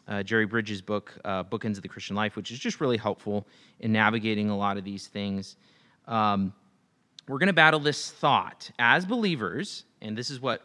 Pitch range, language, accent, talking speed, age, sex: 110-155 Hz, English, American, 195 wpm, 30-49, male